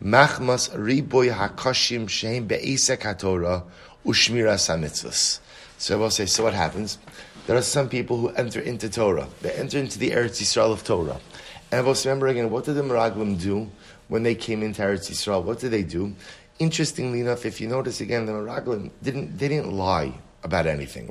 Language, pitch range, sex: English, 100-135 Hz, male